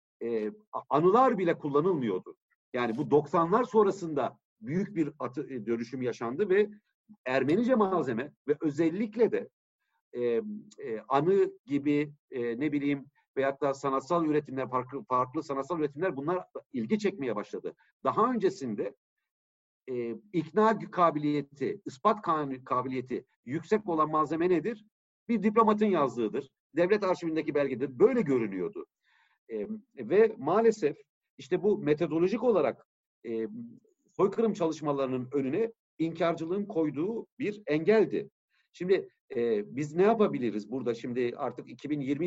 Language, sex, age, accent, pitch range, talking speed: Turkish, male, 60-79, native, 135-210 Hz, 115 wpm